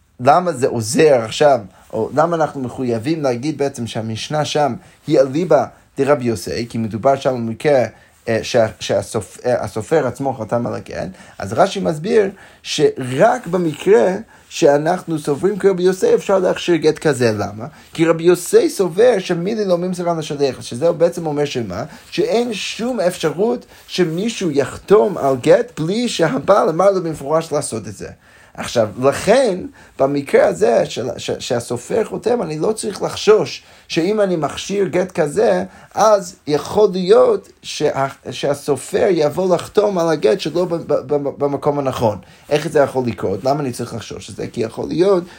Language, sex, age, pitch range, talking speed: Hebrew, male, 30-49, 135-185 Hz, 150 wpm